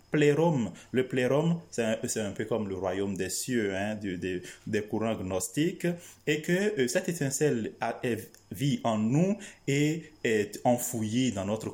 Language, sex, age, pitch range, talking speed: French, male, 30-49, 110-150 Hz, 175 wpm